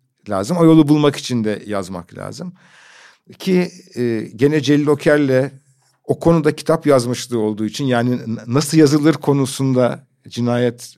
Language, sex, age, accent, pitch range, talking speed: Turkish, male, 50-69, native, 120-150 Hz, 130 wpm